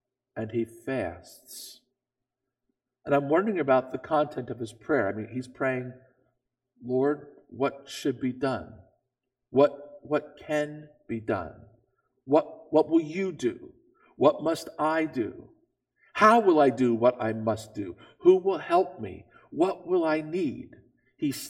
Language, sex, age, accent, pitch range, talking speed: English, male, 50-69, American, 125-165 Hz, 145 wpm